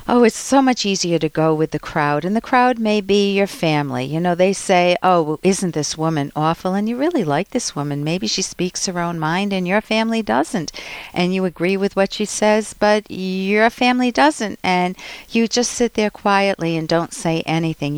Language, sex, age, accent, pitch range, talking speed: English, female, 50-69, American, 155-215 Hz, 210 wpm